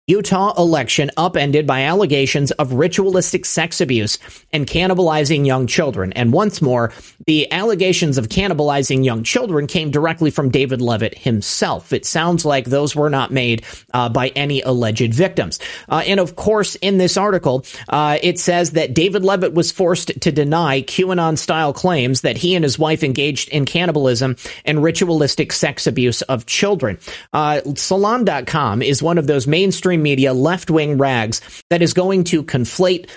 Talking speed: 160 wpm